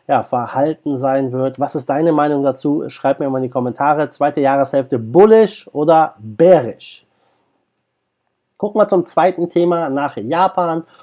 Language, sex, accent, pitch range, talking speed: German, male, German, 140-180 Hz, 145 wpm